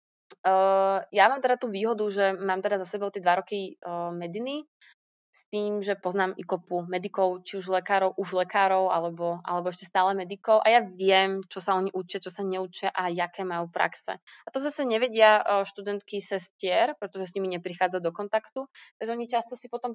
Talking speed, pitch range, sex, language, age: 195 wpm, 185-230 Hz, female, Slovak, 20-39